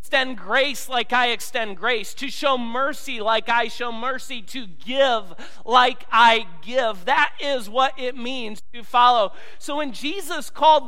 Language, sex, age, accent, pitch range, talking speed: English, male, 40-59, American, 220-295 Hz, 160 wpm